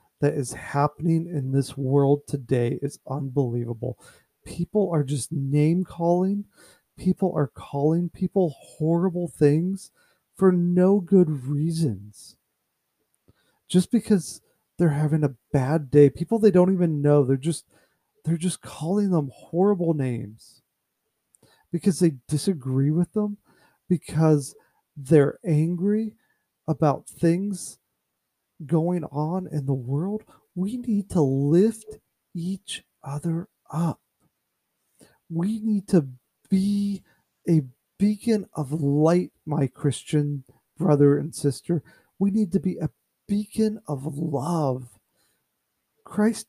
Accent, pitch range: American, 145-190 Hz